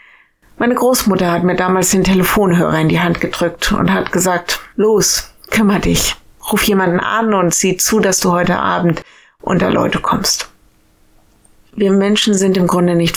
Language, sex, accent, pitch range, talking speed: German, female, German, 170-200 Hz, 165 wpm